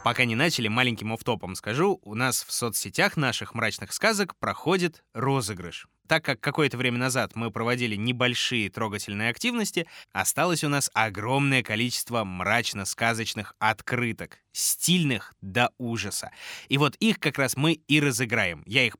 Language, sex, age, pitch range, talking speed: Russian, male, 20-39, 105-150 Hz, 140 wpm